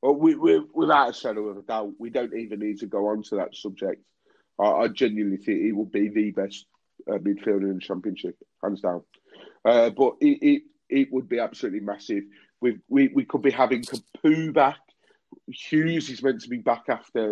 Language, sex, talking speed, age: English, male, 210 wpm, 30-49